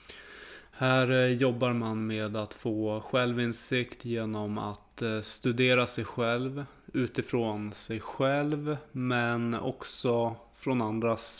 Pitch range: 110-125 Hz